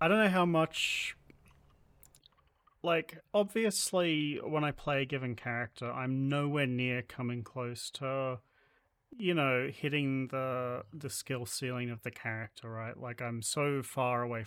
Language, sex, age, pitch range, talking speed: English, male, 30-49, 125-150 Hz, 145 wpm